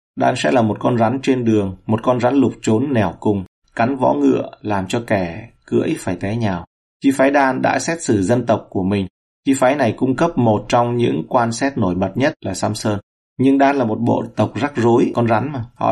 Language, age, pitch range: Vietnamese, 30-49, 105-120 Hz